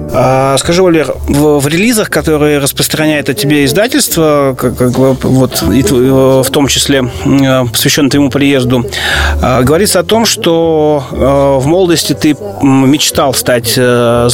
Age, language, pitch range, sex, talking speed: 30-49, Russian, 125-155 Hz, male, 120 wpm